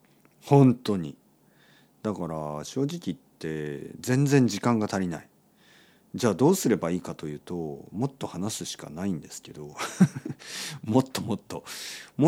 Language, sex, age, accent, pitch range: Japanese, male, 40-59, native, 80-130 Hz